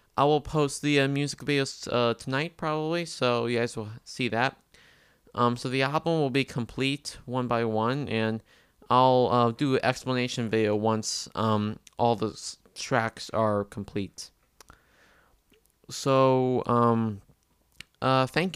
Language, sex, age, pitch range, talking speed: English, male, 20-39, 110-135 Hz, 145 wpm